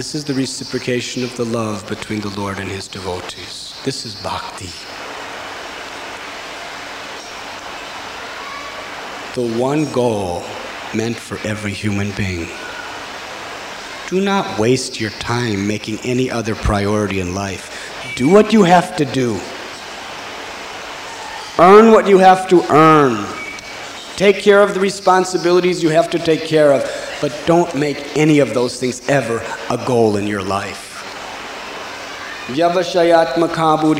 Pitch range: 105-160 Hz